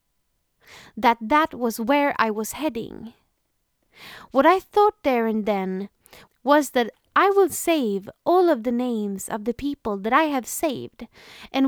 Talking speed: 155 wpm